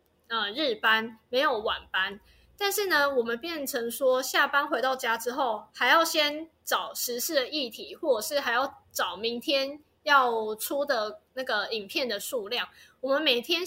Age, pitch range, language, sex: 20-39, 255-340 Hz, Chinese, female